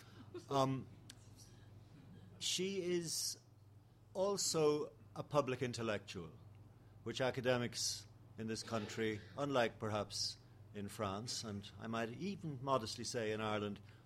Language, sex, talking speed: English, male, 100 wpm